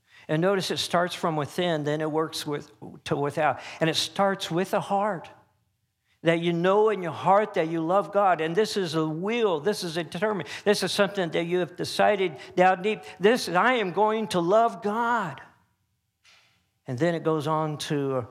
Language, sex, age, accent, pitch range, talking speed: English, male, 50-69, American, 125-175 Hz, 195 wpm